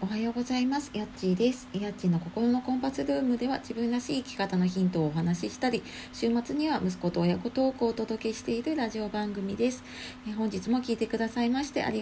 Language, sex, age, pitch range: Japanese, female, 40-59, 170-235 Hz